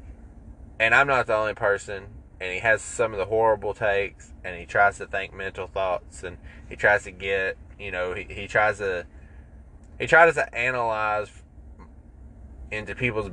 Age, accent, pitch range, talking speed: 20-39, American, 80-105 Hz, 170 wpm